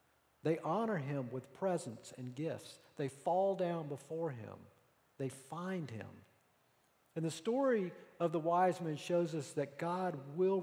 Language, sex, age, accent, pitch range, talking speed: English, male, 50-69, American, 130-175 Hz, 150 wpm